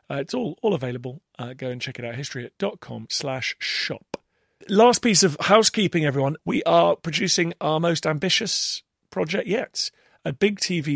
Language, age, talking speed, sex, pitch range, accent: English, 40-59, 175 wpm, male, 130-170 Hz, British